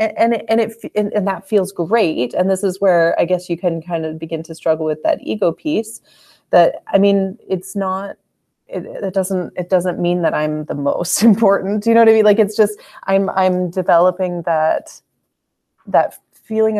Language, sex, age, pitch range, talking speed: English, female, 30-49, 160-195 Hz, 205 wpm